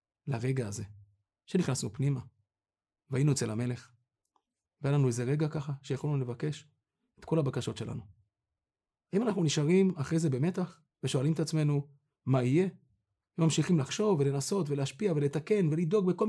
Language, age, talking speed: Hebrew, 30-49, 135 wpm